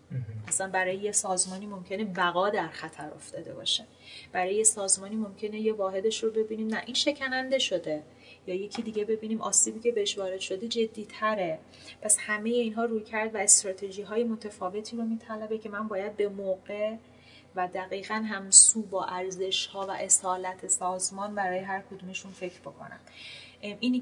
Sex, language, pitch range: female, Persian, 170-210 Hz